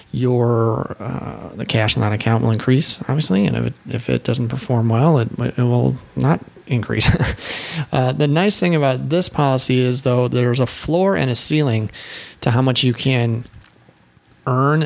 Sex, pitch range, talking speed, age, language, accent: male, 115-135 Hz, 180 wpm, 30-49, English, American